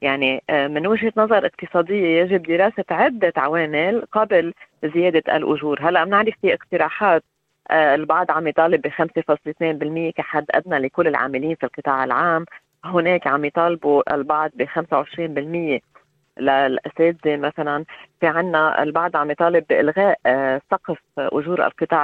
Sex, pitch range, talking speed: female, 150-190 Hz, 125 wpm